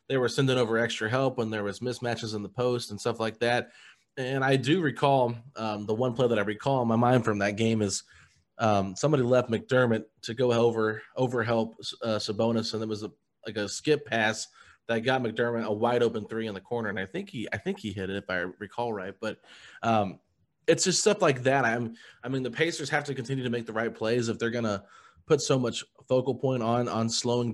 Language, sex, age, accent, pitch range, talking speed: English, male, 20-39, American, 110-135 Hz, 235 wpm